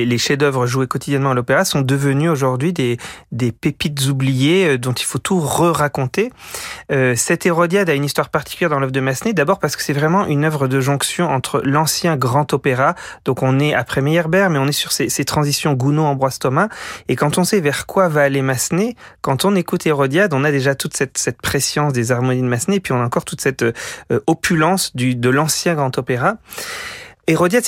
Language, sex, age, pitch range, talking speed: French, male, 30-49, 130-165 Hz, 205 wpm